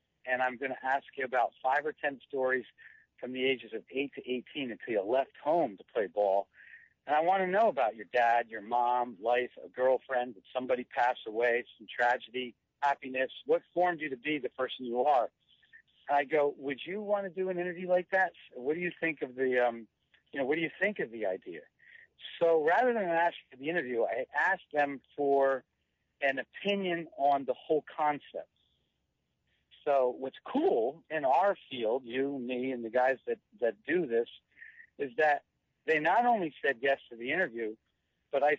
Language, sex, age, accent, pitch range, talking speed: English, male, 60-79, American, 125-165 Hz, 195 wpm